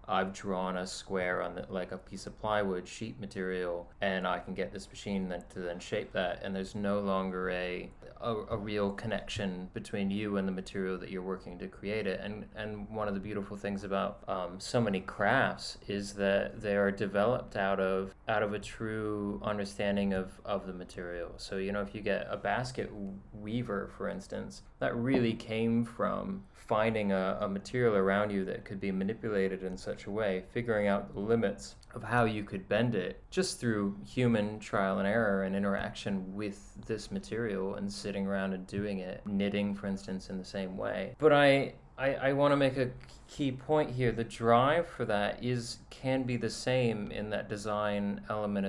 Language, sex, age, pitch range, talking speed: English, male, 20-39, 95-110 Hz, 195 wpm